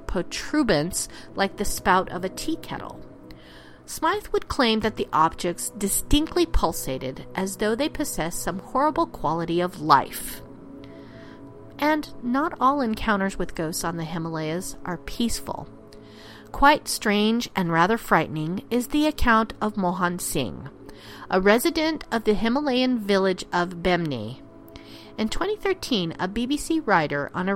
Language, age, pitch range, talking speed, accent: English, 40-59, 175-255 Hz, 135 wpm, American